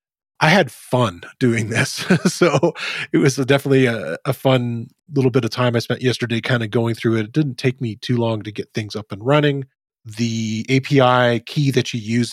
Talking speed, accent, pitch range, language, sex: 205 wpm, American, 110-135 Hz, English, male